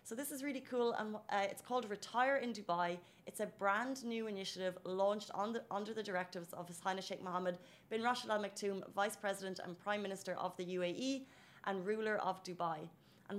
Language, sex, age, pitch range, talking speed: Arabic, female, 30-49, 185-225 Hz, 195 wpm